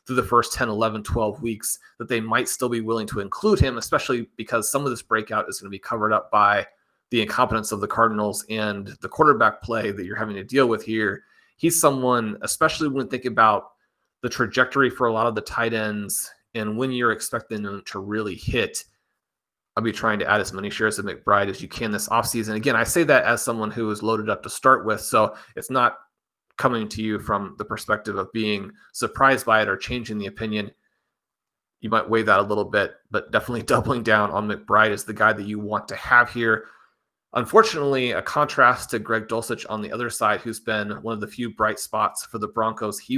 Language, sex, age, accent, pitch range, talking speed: English, male, 30-49, American, 105-120 Hz, 220 wpm